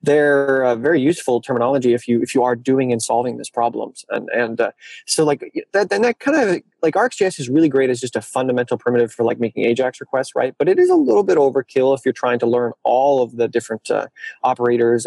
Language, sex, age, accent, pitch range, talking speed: English, male, 30-49, American, 120-145 Hz, 235 wpm